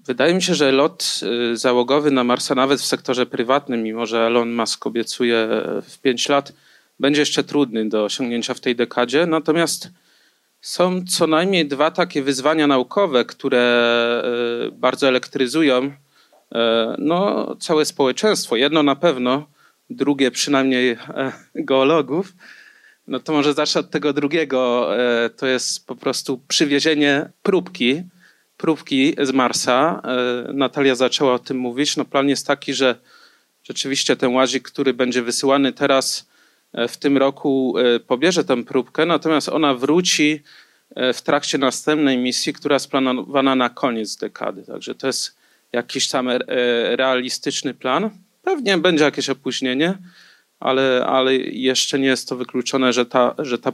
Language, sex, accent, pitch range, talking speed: Polish, male, native, 125-150 Hz, 135 wpm